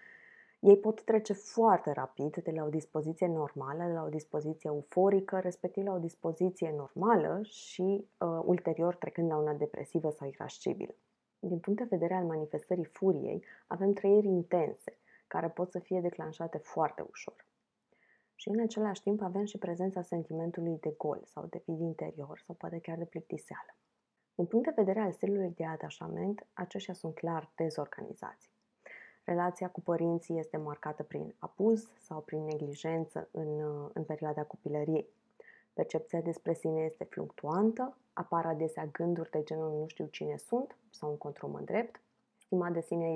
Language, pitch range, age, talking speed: Romanian, 160-200 Hz, 20-39, 155 wpm